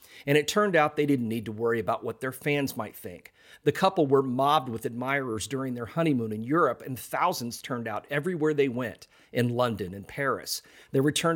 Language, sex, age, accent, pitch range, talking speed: English, male, 40-59, American, 120-155 Hz, 205 wpm